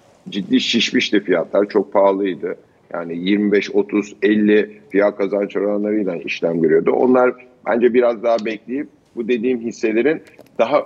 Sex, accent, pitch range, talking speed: male, native, 110-135 Hz, 115 wpm